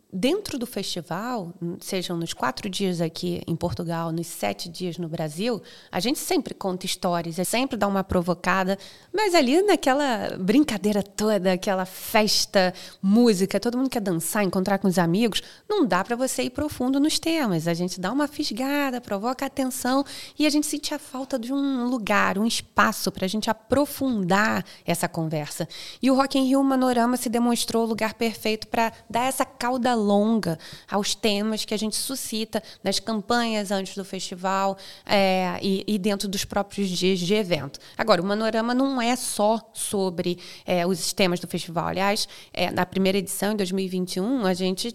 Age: 20-39